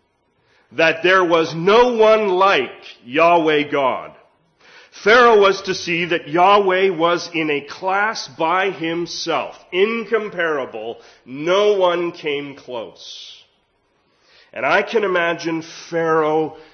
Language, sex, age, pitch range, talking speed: English, male, 40-59, 145-195 Hz, 110 wpm